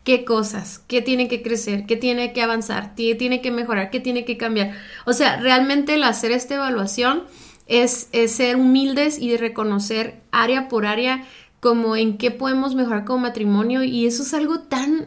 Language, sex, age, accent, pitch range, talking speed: Spanish, female, 30-49, Mexican, 225-275 Hz, 185 wpm